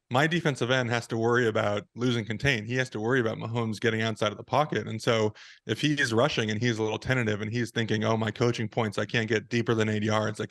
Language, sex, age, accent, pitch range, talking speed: English, male, 20-39, American, 110-130 Hz, 255 wpm